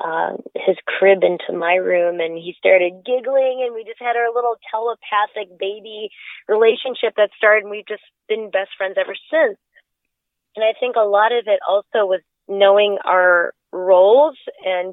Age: 20-39